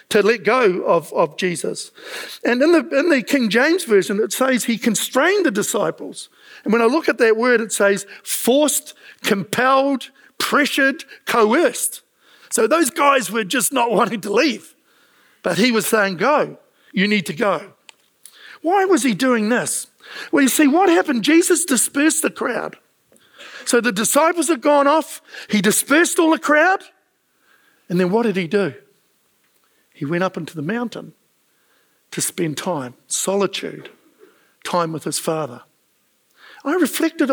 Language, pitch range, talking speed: English, 205-315 Hz, 160 wpm